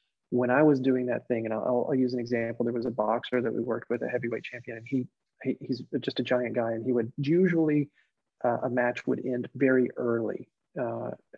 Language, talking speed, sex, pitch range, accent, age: English, 225 wpm, male, 120-140 Hz, American, 40-59